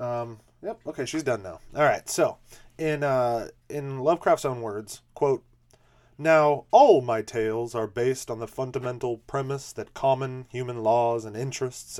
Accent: American